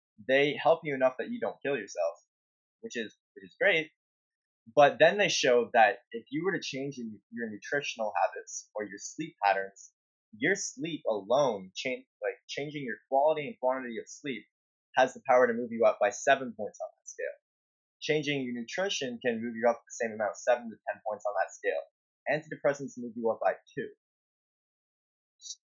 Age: 20-39